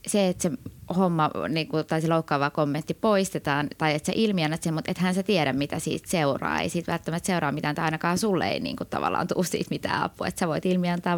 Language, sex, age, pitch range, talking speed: Finnish, female, 20-39, 155-190 Hz, 210 wpm